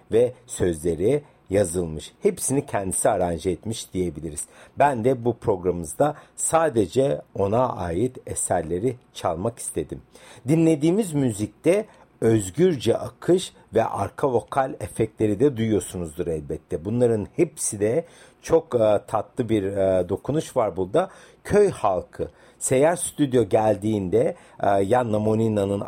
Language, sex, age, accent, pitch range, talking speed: Turkish, male, 60-79, native, 100-130 Hz, 105 wpm